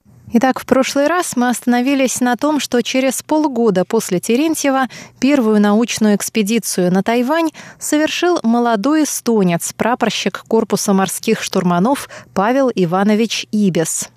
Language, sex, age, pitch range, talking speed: Russian, female, 20-39, 190-255 Hz, 120 wpm